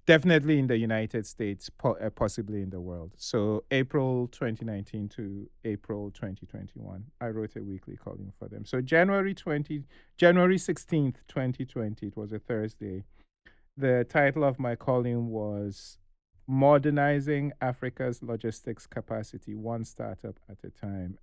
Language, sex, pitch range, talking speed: English, male, 105-140 Hz, 145 wpm